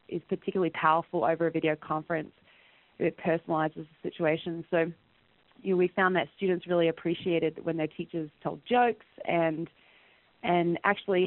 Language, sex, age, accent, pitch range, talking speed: English, female, 20-39, Australian, 155-175 Hz, 150 wpm